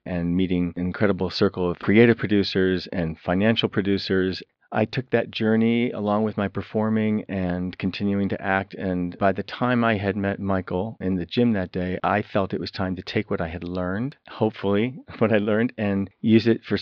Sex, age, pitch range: male, 40-59, 90-110 Hz